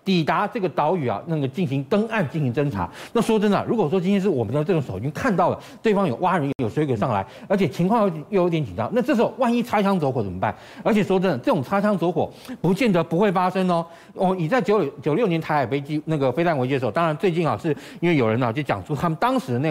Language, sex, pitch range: Chinese, male, 140-195 Hz